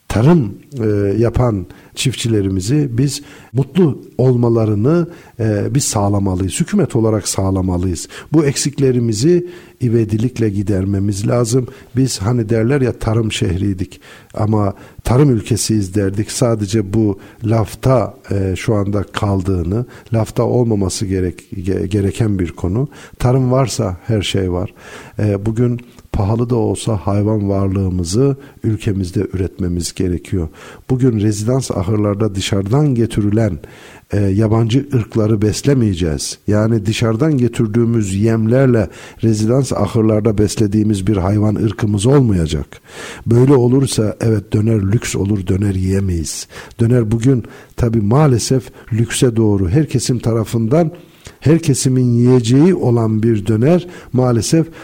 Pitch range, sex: 100-130 Hz, male